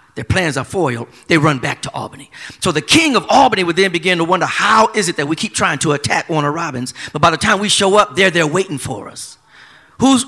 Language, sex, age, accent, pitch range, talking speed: English, male, 40-59, American, 160-220 Hz, 255 wpm